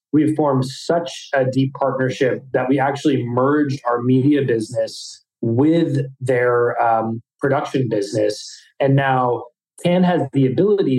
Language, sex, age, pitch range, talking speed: English, male, 20-39, 125-145 Hz, 135 wpm